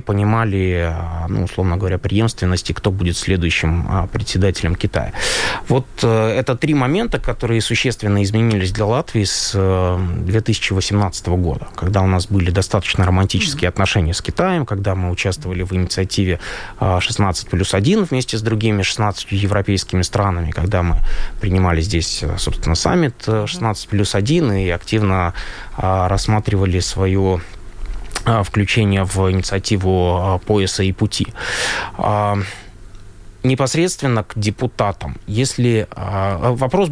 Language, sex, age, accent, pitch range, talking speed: Russian, male, 20-39, native, 90-105 Hz, 110 wpm